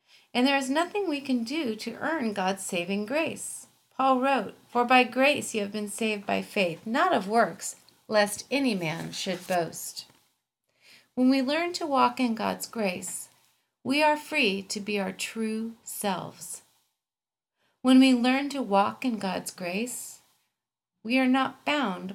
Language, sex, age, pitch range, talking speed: English, female, 40-59, 185-255 Hz, 160 wpm